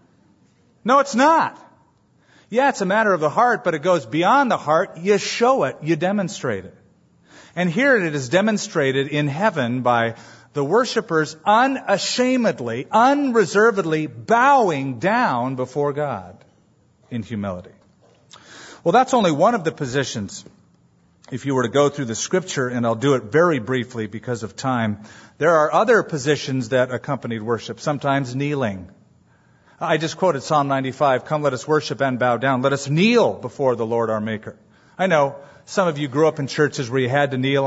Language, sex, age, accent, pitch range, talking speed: English, male, 40-59, American, 125-170 Hz, 170 wpm